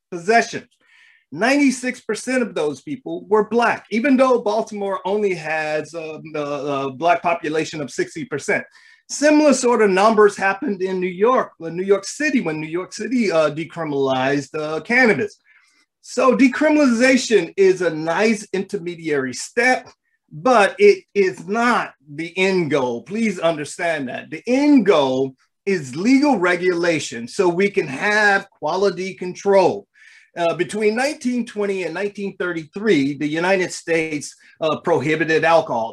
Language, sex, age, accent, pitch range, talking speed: English, male, 30-49, American, 165-240 Hz, 130 wpm